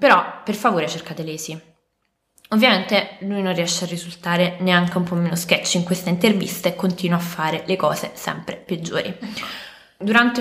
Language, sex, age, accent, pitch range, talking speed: Italian, female, 20-39, native, 170-210 Hz, 160 wpm